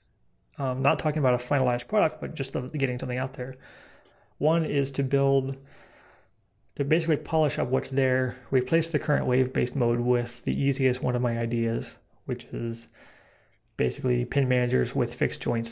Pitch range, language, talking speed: 120-140 Hz, English, 165 wpm